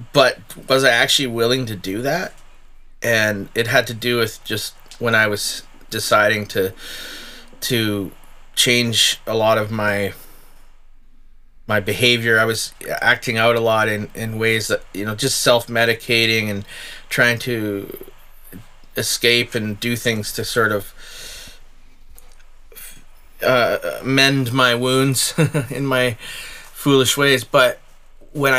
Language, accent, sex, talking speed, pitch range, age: English, American, male, 130 wpm, 110-135 Hz, 30-49